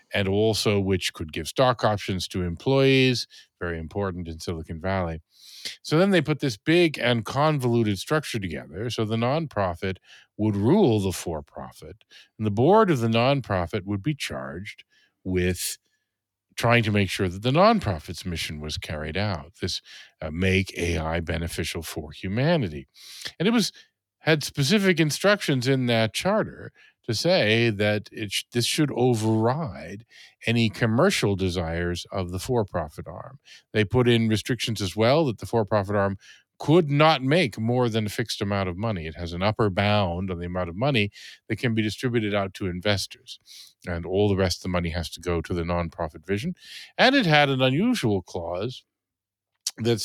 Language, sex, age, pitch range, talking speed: Danish, male, 50-69, 95-125 Hz, 170 wpm